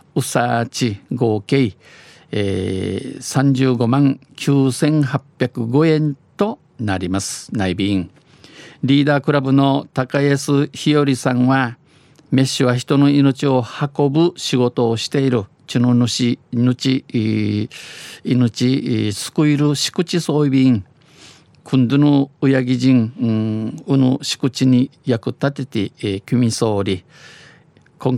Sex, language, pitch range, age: male, Japanese, 110-140 Hz, 50-69